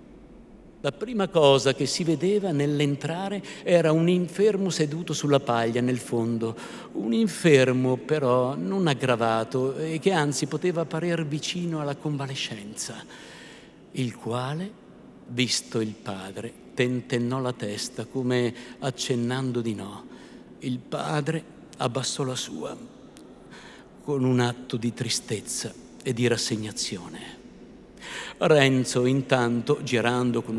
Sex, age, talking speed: male, 50-69, 110 wpm